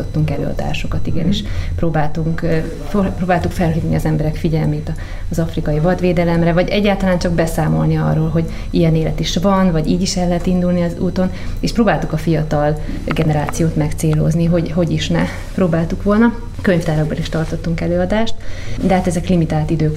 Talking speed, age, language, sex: 150 wpm, 30-49, Hungarian, female